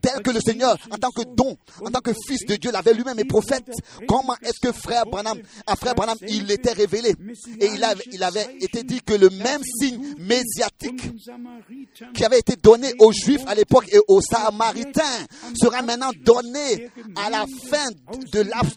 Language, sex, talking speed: French, male, 200 wpm